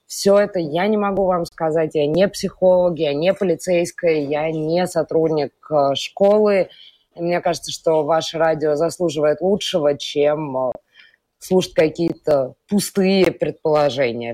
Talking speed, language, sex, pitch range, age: 120 wpm, Russian, female, 150-185 Hz, 20-39